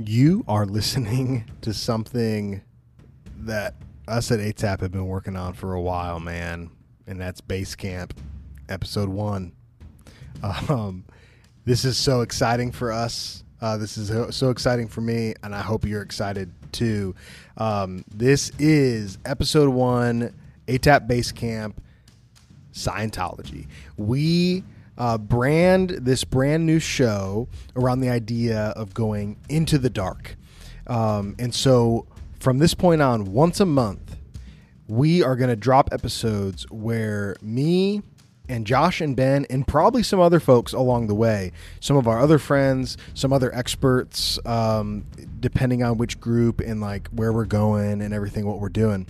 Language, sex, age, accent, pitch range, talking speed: English, male, 20-39, American, 100-130 Hz, 145 wpm